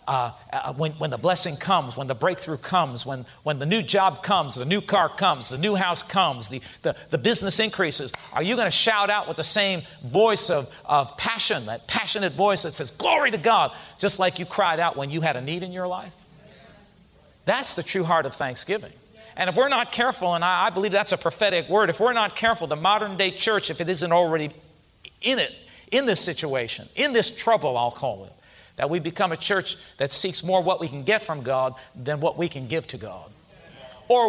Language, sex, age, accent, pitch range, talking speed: English, male, 50-69, American, 145-190 Hz, 220 wpm